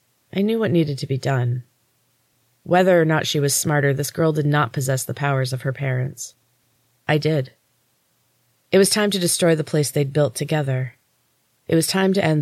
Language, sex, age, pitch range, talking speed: English, female, 30-49, 130-165 Hz, 195 wpm